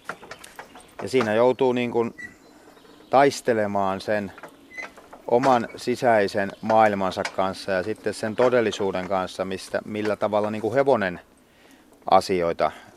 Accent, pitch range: native, 100-120 Hz